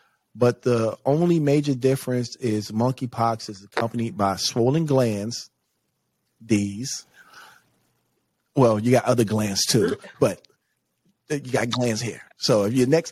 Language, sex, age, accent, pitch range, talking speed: English, male, 30-49, American, 105-125 Hz, 130 wpm